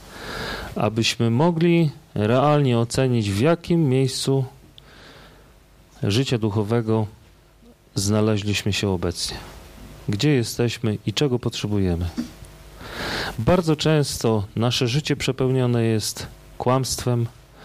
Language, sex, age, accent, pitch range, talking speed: Polish, male, 40-59, native, 105-130 Hz, 80 wpm